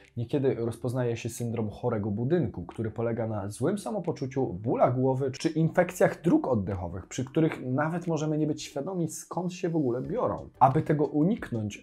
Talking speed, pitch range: 160 wpm, 115-155 Hz